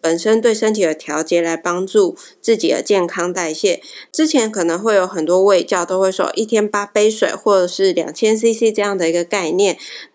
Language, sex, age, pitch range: Chinese, female, 20-39, 185-230 Hz